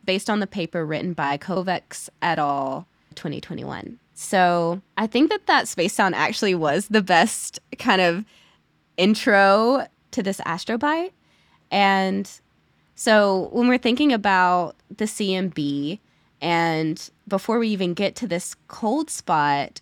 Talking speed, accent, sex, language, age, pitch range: 135 wpm, American, female, English, 20-39, 165-210 Hz